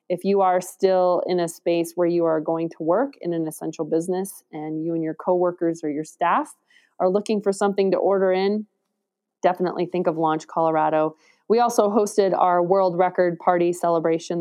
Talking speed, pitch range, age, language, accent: 185 wpm, 160-195 Hz, 20-39, English, American